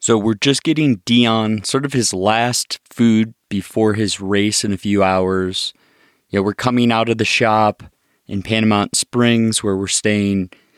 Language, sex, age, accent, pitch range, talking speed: English, male, 20-39, American, 100-120 Hz, 175 wpm